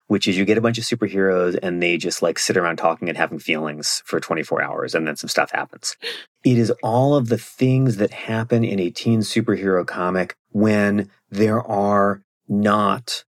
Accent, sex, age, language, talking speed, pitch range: American, male, 30-49, English, 195 wpm, 85-105 Hz